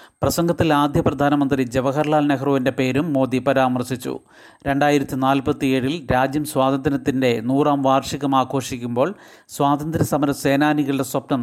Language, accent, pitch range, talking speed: Malayalam, native, 135-150 Hz, 95 wpm